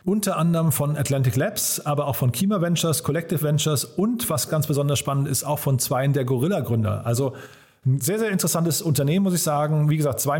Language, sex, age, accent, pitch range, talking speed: German, male, 40-59, German, 135-165 Hz, 210 wpm